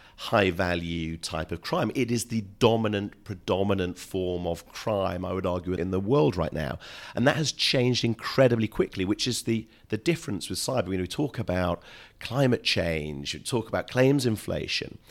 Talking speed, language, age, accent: 185 wpm, English, 40-59, British